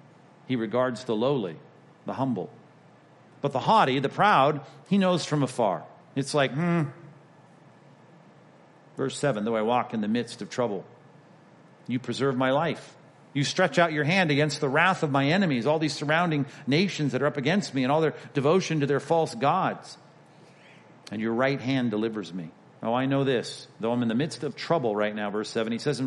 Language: English